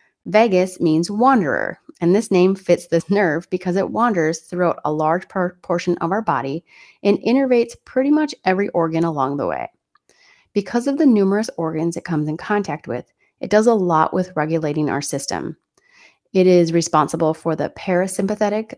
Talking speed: 165 wpm